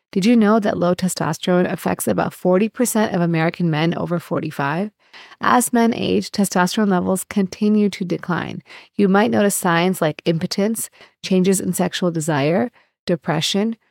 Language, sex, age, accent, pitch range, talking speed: English, female, 30-49, American, 170-205 Hz, 140 wpm